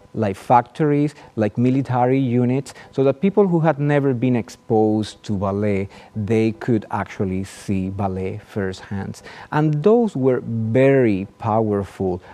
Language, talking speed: English, 125 wpm